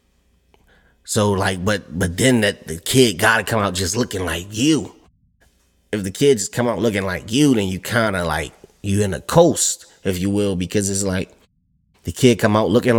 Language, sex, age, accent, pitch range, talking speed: English, male, 30-49, American, 95-110 Hz, 210 wpm